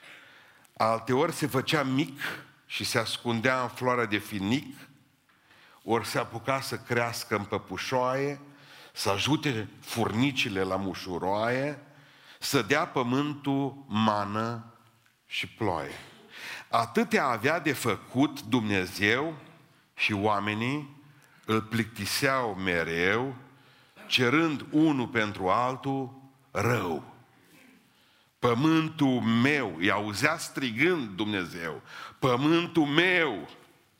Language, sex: Romanian, male